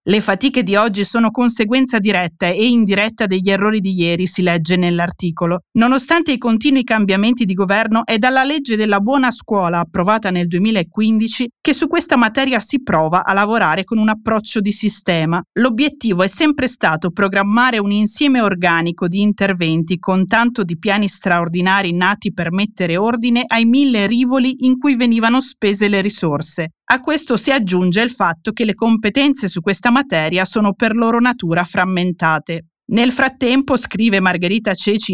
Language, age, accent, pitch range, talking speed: Italian, 30-49, native, 185-240 Hz, 160 wpm